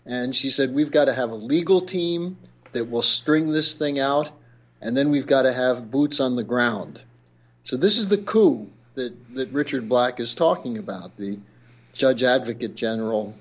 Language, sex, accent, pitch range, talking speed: English, male, American, 115-150 Hz, 190 wpm